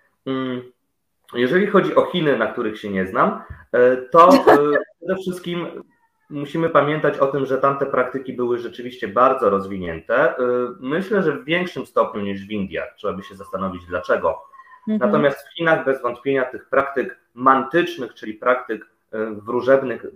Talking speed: 140 wpm